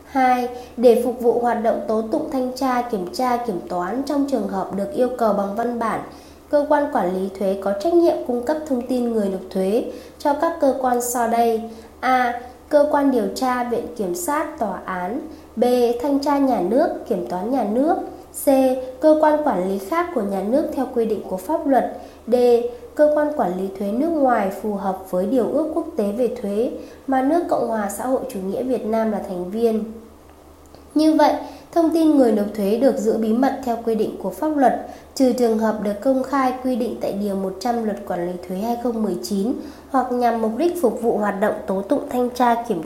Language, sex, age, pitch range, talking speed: Vietnamese, female, 20-39, 210-275 Hz, 215 wpm